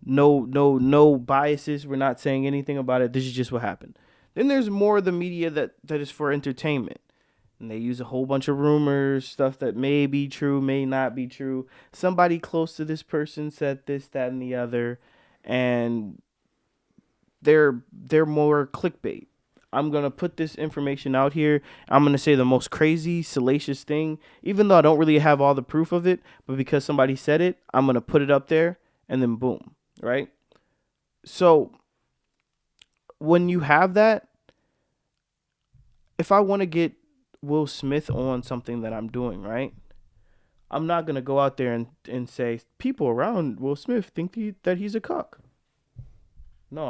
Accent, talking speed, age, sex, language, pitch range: American, 175 wpm, 20-39, male, English, 125-155 Hz